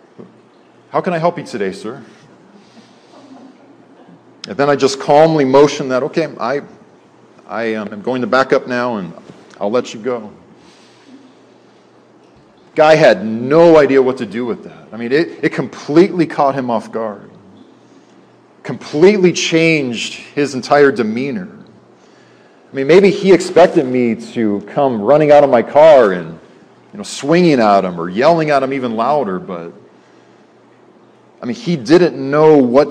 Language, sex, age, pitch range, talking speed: English, male, 40-59, 125-160 Hz, 150 wpm